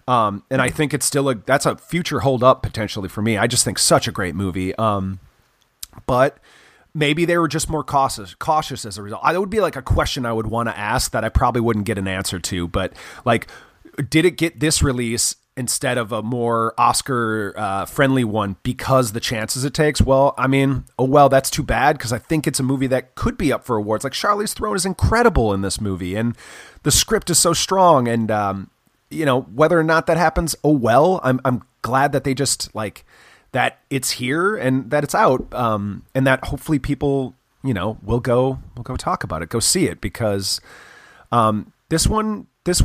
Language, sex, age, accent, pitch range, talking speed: English, male, 30-49, American, 110-150 Hz, 215 wpm